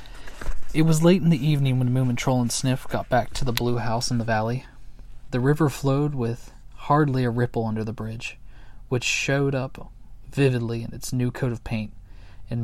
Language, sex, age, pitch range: English, male, 20-39, 115-160 Hz